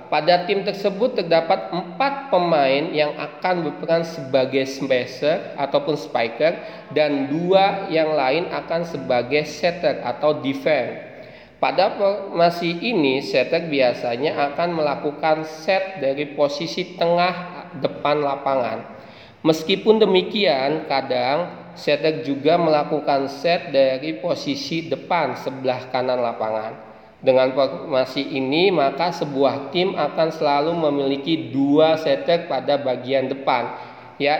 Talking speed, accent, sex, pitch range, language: 110 wpm, native, male, 140-180 Hz, Indonesian